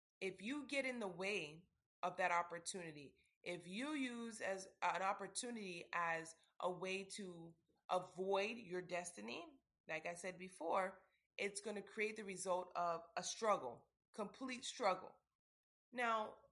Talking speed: 140 wpm